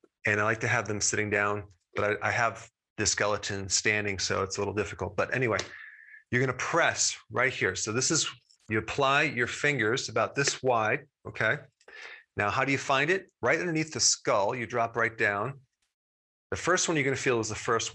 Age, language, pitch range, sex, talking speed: 30-49, English, 105-135 Hz, male, 205 wpm